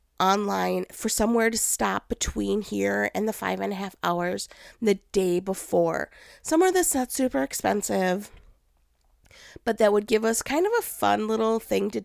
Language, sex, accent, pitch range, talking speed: English, female, American, 185-245 Hz, 170 wpm